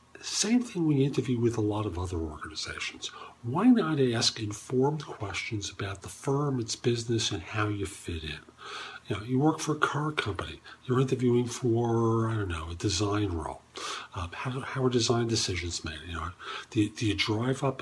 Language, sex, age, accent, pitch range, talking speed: English, male, 50-69, American, 105-130 Hz, 190 wpm